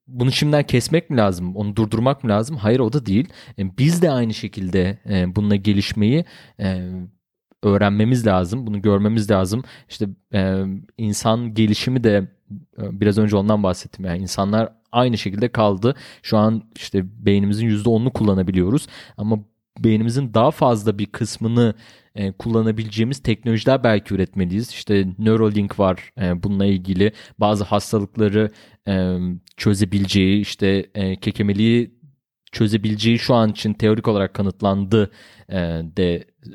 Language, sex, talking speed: Turkish, male, 115 wpm